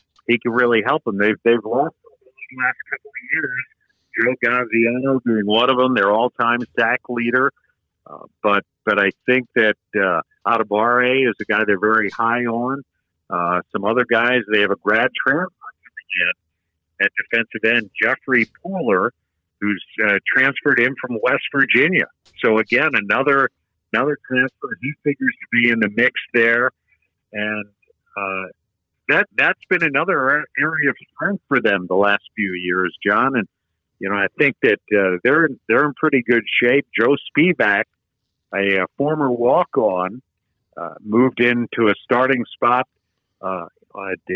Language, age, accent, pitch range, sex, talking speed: English, 50-69, American, 100-125 Hz, male, 155 wpm